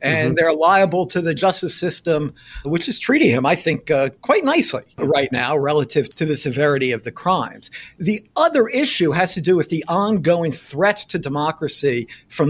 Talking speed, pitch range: 180 wpm, 135-180 Hz